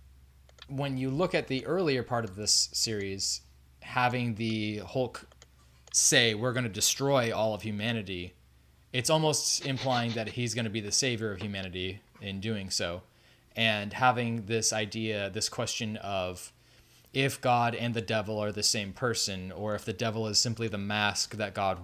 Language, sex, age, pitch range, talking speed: English, male, 20-39, 100-125 Hz, 170 wpm